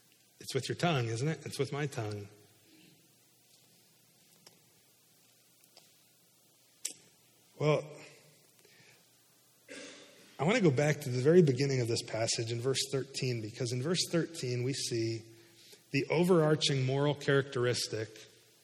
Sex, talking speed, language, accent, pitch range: male, 115 wpm, English, American, 130-175 Hz